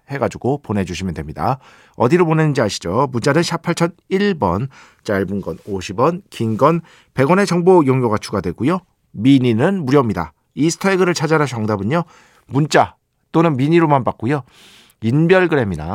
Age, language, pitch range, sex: 50-69, Korean, 105-165 Hz, male